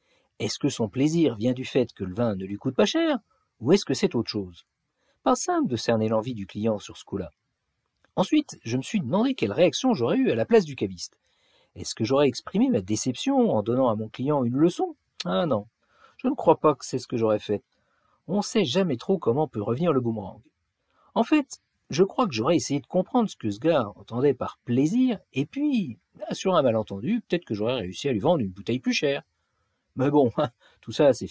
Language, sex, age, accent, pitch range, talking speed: French, male, 50-69, French, 115-165 Hz, 225 wpm